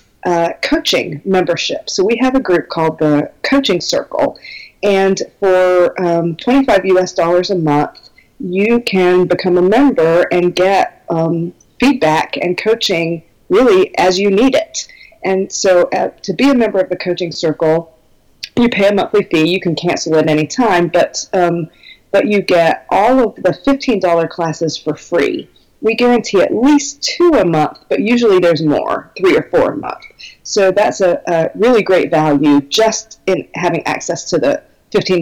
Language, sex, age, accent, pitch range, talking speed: English, female, 40-59, American, 165-220 Hz, 170 wpm